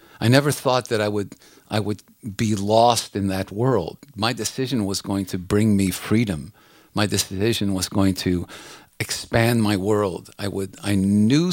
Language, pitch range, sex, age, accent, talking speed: English, 105-130 Hz, male, 50-69, American, 170 wpm